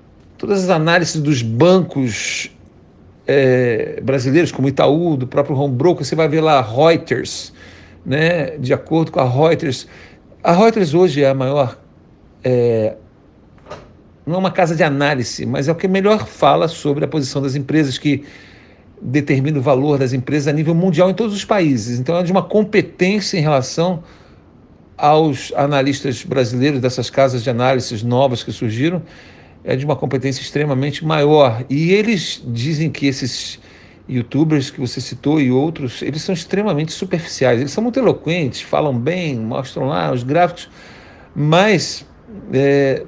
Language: Portuguese